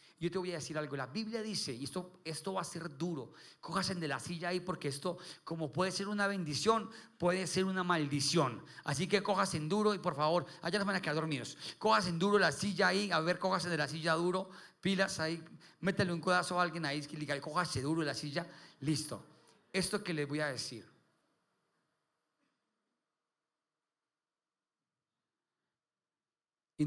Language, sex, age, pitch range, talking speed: Spanish, male, 40-59, 135-180 Hz, 185 wpm